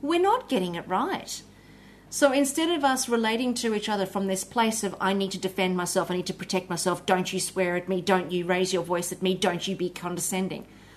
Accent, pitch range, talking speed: Australian, 190-260 Hz, 235 wpm